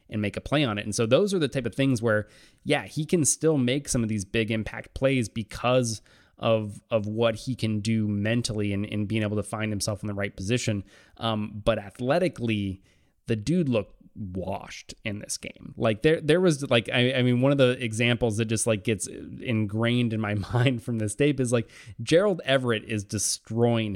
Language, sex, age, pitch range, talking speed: English, male, 20-39, 105-125 Hz, 210 wpm